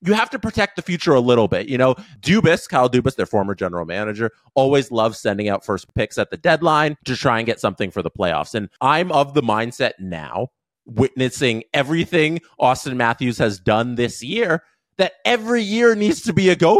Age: 30-49